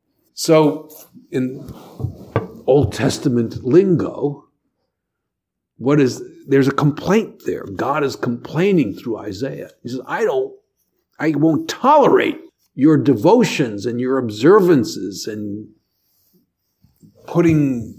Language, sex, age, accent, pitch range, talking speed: English, male, 50-69, American, 120-165 Hz, 100 wpm